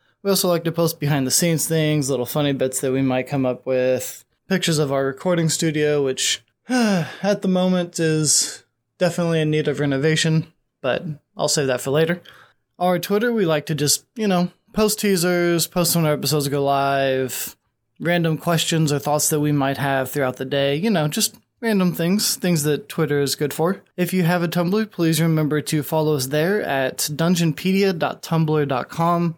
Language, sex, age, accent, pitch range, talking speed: English, male, 20-39, American, 145-180 Hz, 185 wpm